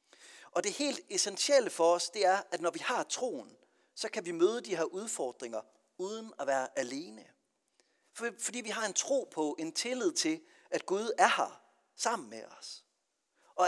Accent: native